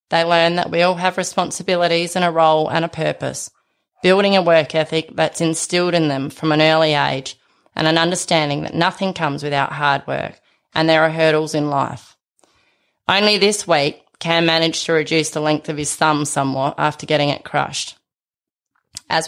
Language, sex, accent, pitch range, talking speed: English, female, Australian, 150-170 Hz, 180 wpm